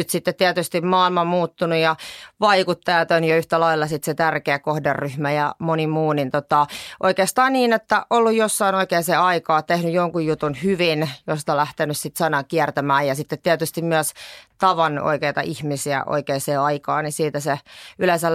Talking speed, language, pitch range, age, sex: 165 wpm, Finnish, 150-180 Hz, 30-49, female